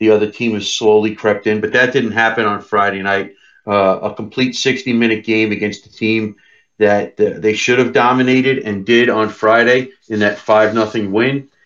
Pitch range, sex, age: 105-125 Hz, male, 40-59